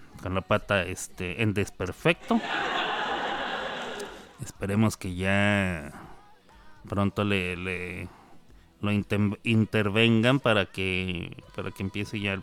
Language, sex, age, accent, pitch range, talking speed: Spanish, male, 30-49, Mexican, 95-130 Hz, 105 wpm